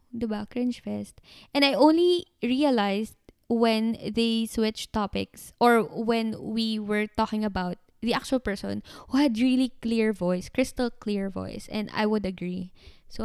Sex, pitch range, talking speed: female, 205-250 Hz, 155 wpm